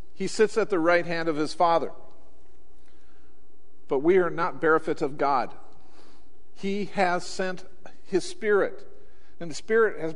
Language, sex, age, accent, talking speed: English, male, 50-69, American, 150 wpm